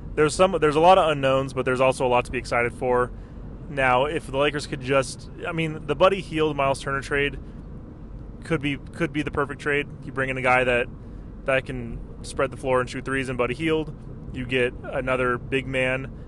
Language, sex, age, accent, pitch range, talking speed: English, male, 20-39, American, 125-145 Hz, 215 wpm